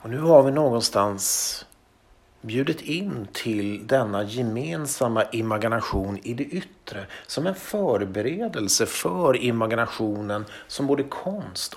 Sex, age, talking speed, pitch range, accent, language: male, 50-69, 110 wpm, 105-135 Hz, Swedish, English